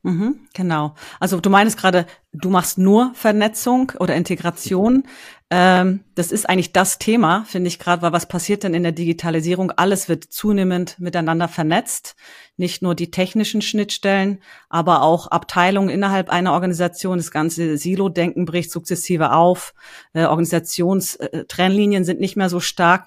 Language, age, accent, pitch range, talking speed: English, 40-59, German, 170-190 Hz, 140 wpm